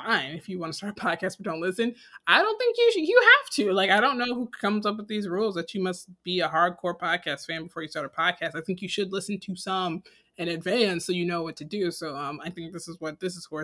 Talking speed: 295 wpm